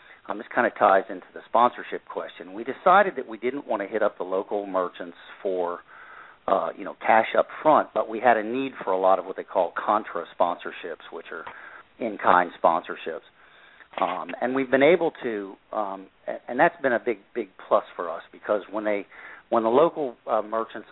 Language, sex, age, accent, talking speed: English, male, 50-69, American, 200 wpm